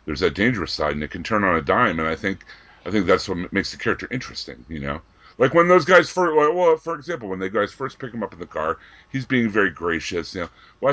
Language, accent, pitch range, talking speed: English, American, 80-115 Hz, 270 wpm